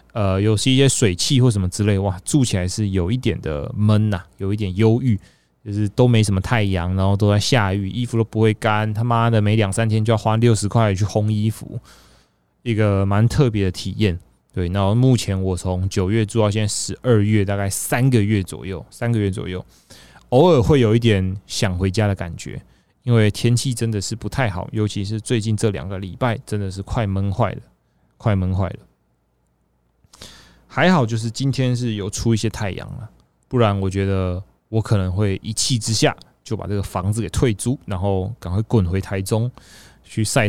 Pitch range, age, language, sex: 95-115 Hz, 20-39, Chinese, male